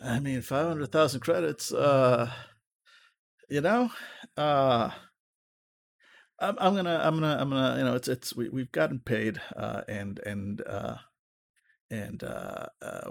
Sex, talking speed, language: male, 135 wpm, English